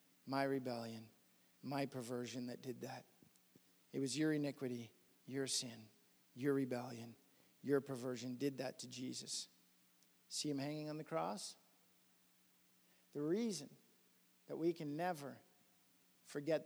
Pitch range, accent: 125-160 Hz, American